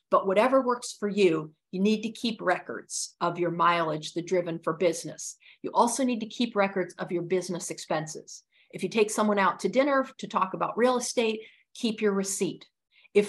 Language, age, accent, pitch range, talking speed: English, 50-69, American, 175-220 Hz, 195 wpm